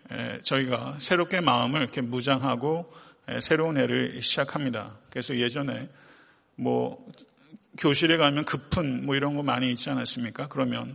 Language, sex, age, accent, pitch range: Korean, male, 40-59, native, 130-160 Hz